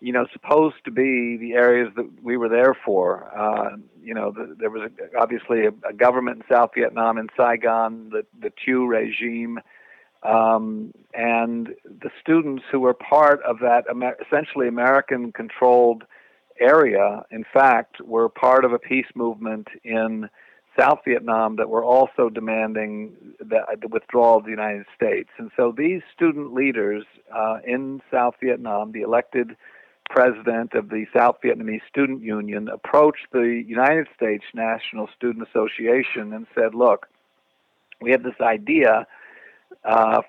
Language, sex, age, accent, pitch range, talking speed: English, male, 50-69, American, 115-135 Hz, 150 wpm